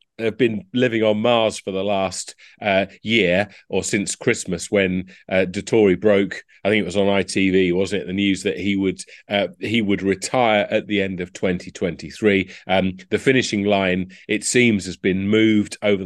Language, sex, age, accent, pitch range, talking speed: English, male, 40-59, British, 95-110 Hz, 185 wpm